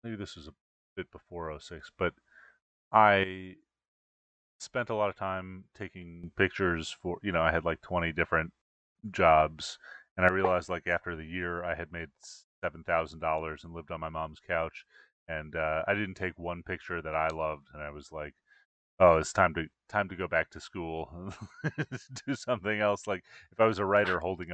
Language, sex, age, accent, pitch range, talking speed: English, male, 30-49, American, 80-95 Hz, 185 wpm